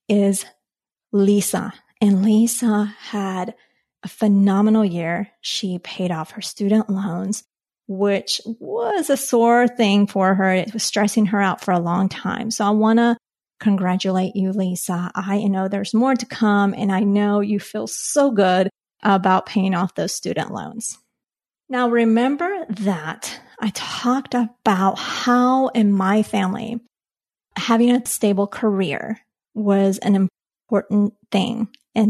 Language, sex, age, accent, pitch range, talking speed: English, female, 30-49, American, 195-225 Hz, 140 wpm